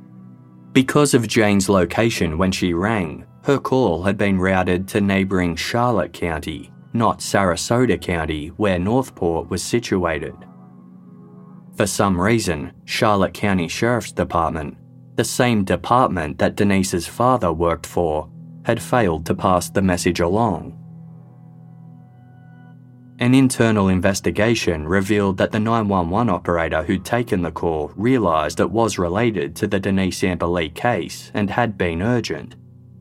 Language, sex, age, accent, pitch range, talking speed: English, male, 20-39, Australian, 90-115 Hz, 125 wpm